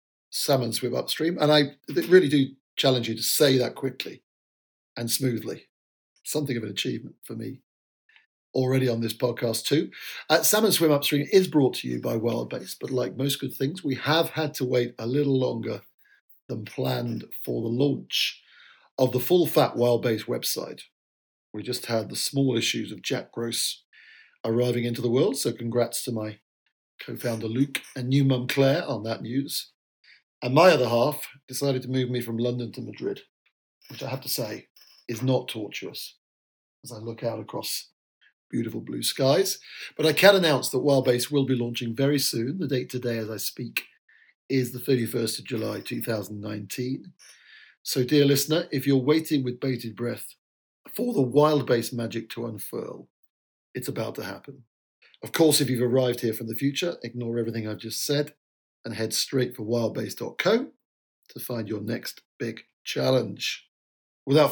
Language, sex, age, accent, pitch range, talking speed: English, male, 50-69, British, 115-140 Hz, 170 wpm